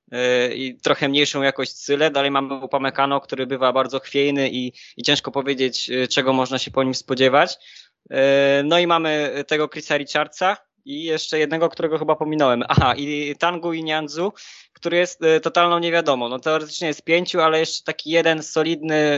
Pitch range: 135-165 Hz